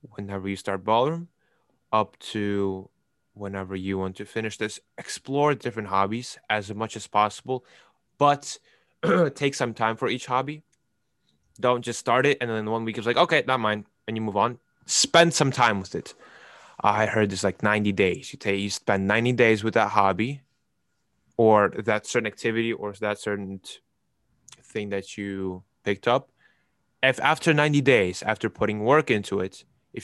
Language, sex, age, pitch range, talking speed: English, male, 10-29, 100-130 Hz, 170 wpm